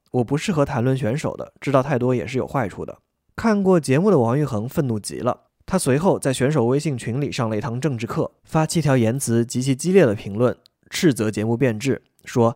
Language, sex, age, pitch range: Chinese, male, 20-39, 115-150 Hz